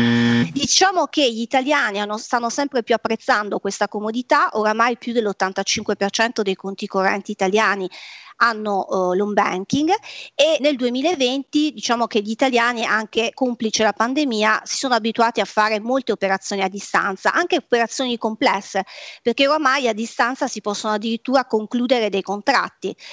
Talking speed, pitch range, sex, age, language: 140 wpm, 200-255 Hz, female, 30-49, Italian